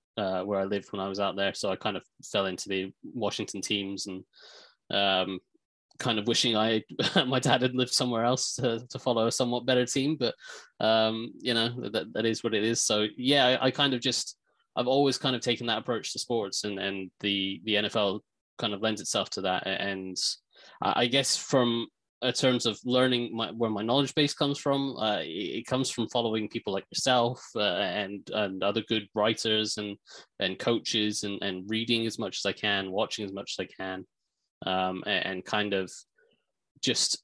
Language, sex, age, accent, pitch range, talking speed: English, male, 20-39, British, 95-125 Hz, 200 wpm